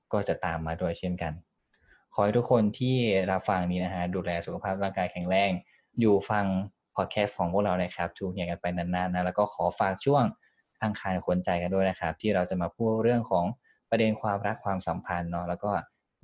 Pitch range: 90-110 Hz